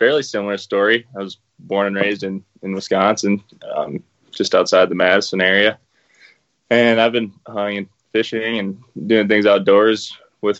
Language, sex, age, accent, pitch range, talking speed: English, male, 20-39, American, 95-110 Hz, 160 wpm